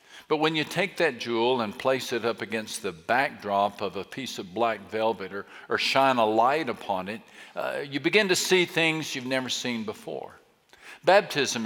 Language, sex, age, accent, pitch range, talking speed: English, male, 50-69, American, 120-155 Hz, 190 wpm